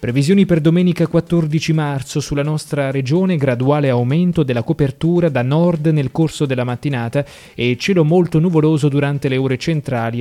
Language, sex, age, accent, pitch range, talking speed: Italian, male, 20-39, native, 125-160 Hz, 155 wpm